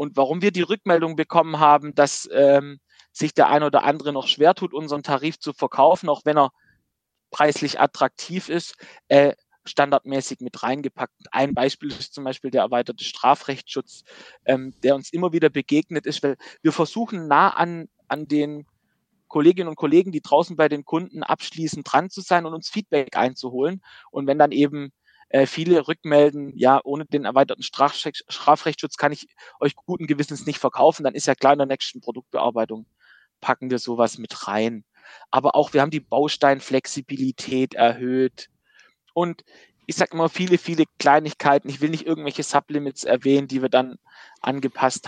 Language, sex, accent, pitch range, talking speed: German, male, German, 135-160 Hz, 165 wpm